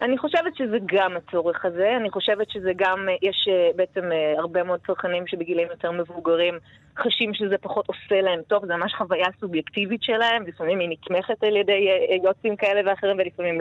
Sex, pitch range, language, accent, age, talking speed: female, 175-215 Hz, Hebrew, native, 20-39, 170 wpm